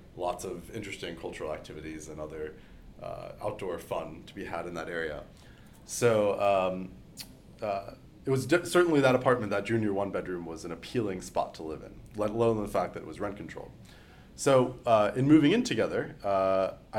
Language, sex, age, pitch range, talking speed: English, male, 30-49, 90-120 Hz, 185 wpm